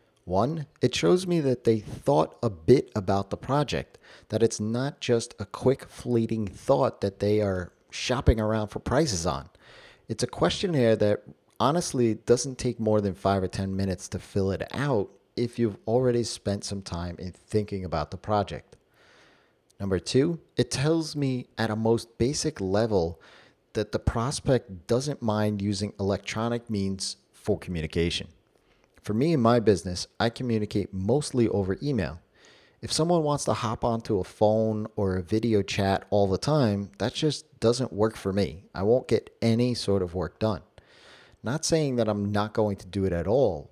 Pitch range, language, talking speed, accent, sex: 100-120 Hz, English, 175 wpm, American, male